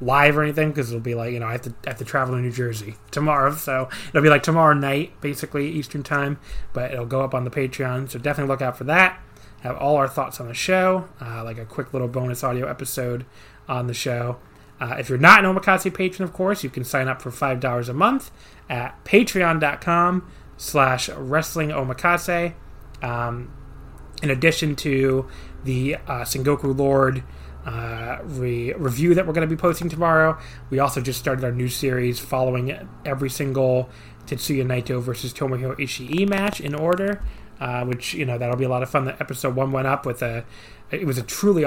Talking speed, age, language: 200 wpm, 30-49, English